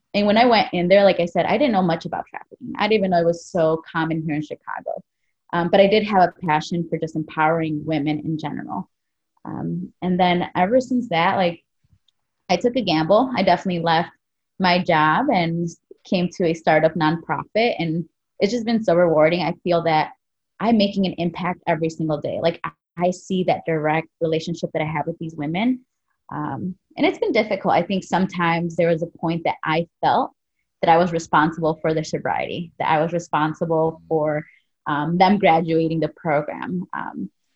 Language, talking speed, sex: English, 195 wpm, female